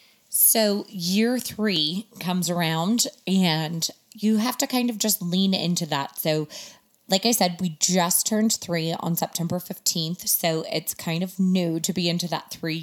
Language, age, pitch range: English, 20-39, 160-200 Hz